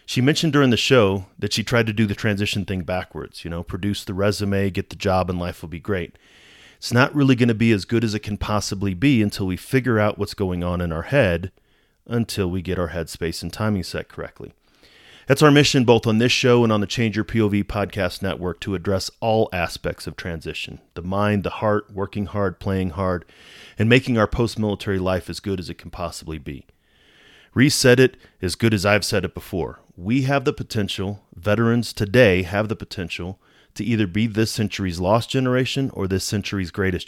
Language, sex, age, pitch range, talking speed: English, male, 30-49, 90-115 Hz, 210 wpm